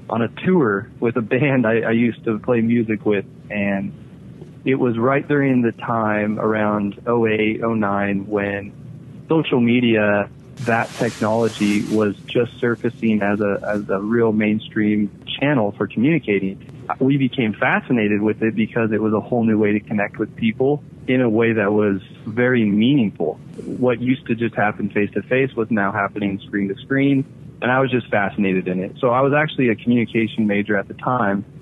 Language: English